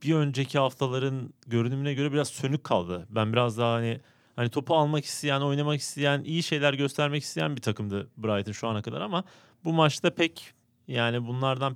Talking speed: 175 wpm